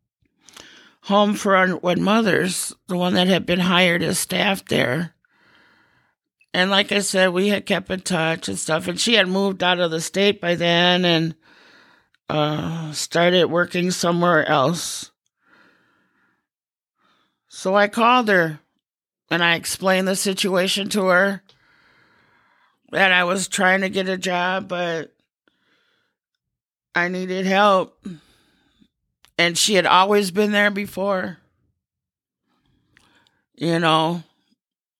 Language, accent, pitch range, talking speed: English, American, 170-195 Hz, 125 wpm